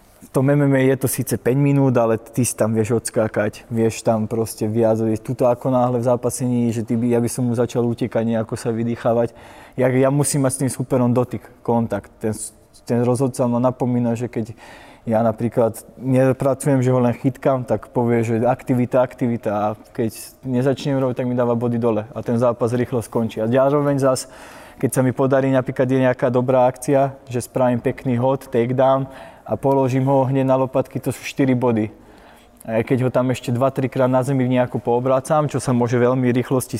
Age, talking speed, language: 20-39, 195 wpm, Slovak